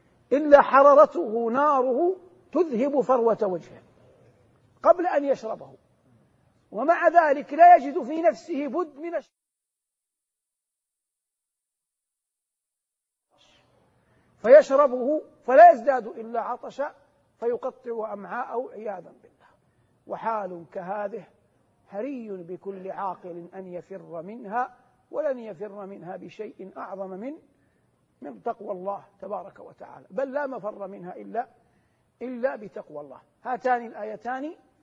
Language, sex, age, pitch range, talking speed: Arabic, male, 50-69, 210-280 Hz, 95 wpm